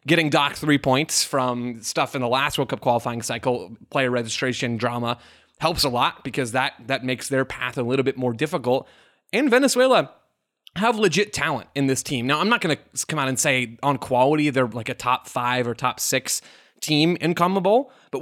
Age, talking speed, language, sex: 20-39, 200 wpm, English, male